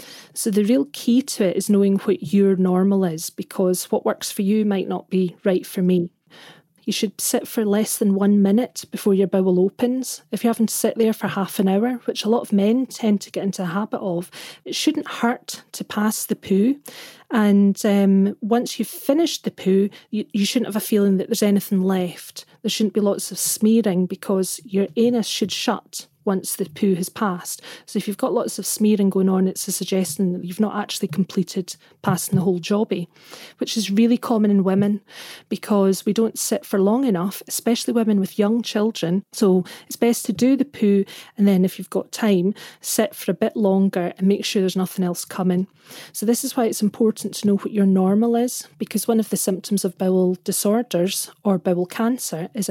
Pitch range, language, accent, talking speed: 190-225 Hz, English, British, 210 wpm